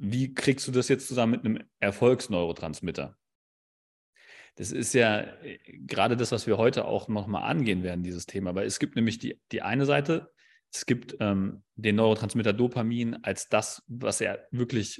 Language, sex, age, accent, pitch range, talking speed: German, male, 30-49, German, 95-130 Hz, 170 wpm